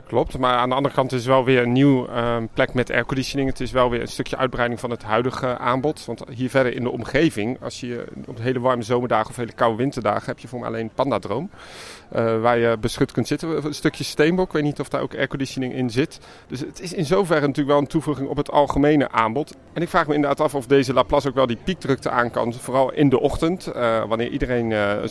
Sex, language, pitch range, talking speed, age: male, Dutch, 120-150 Hz, 245 wpm, 40-59